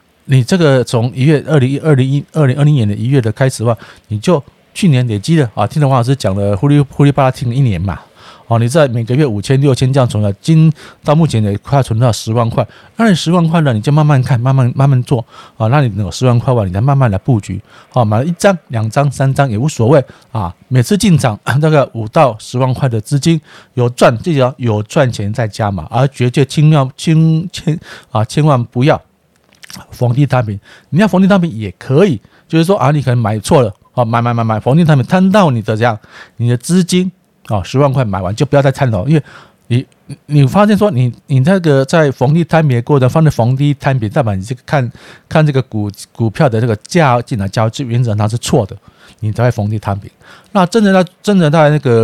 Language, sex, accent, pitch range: Chinese, male, native, 115-150 Hz